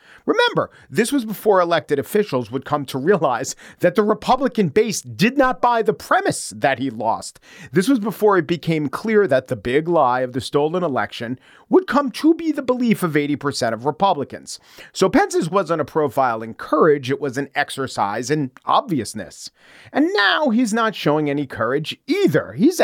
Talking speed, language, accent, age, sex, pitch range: 180 wpm, English, American, 40-59, male, 140-210 Hz